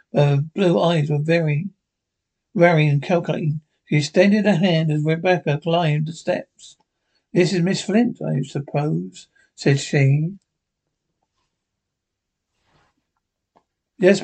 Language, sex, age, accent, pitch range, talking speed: English, male, 60-79, British, 150-180 Hz, 110 wpm